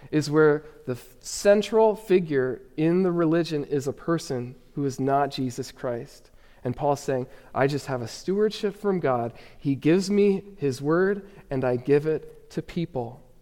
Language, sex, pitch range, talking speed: English, male, 130-175 Hz, 170 wpm